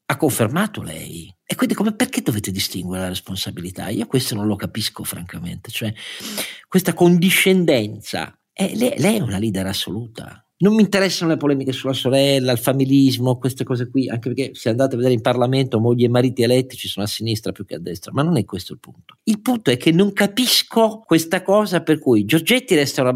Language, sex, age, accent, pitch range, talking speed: Italian, male, 50-69, native, 105-175 Hz, 200 wpm